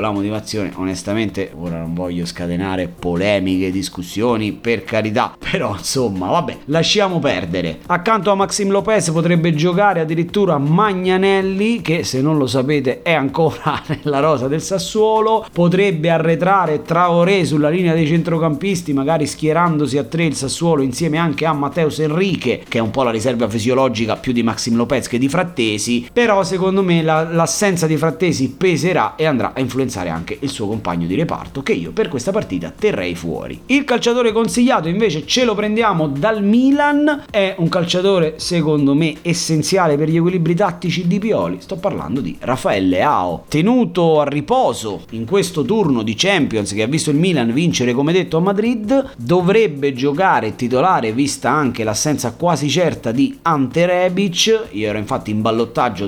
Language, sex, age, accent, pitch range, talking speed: Italian, male, 30-49, native, 125-190 Hz, 165 wpm